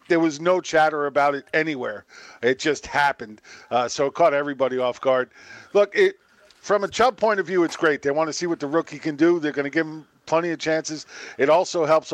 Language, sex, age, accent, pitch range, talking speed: English, male, 50-69, American, 145-170 Hz, 225 wpm